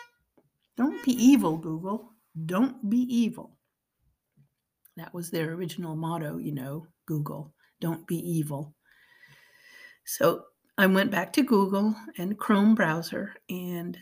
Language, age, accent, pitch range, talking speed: English, 50-69, American, 175-240 Hz, 120 wpm